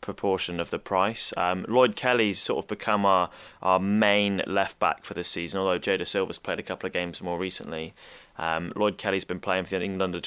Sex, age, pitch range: male, 20-39, 90-110 Hz